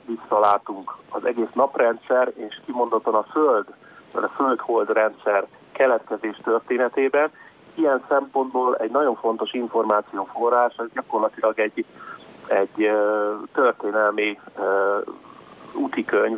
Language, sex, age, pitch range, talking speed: Hungarian, male, 30-49, 110-130 Hz, 100 wpm